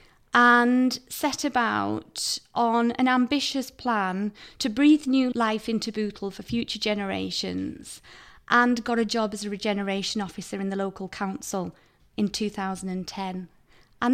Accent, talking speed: British, 130 wpm